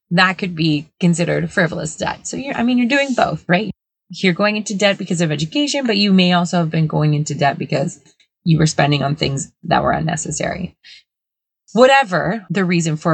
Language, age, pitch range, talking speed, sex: English, 20-39, 160-215 Hz, 200 wpm, female